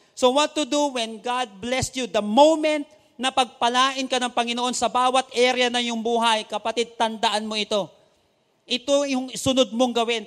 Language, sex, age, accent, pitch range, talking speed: English, male, 40-59, Filipino, 210-255 Hz, 175 wpm